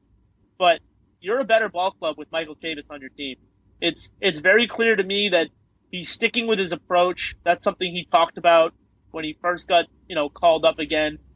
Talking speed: 200 wpm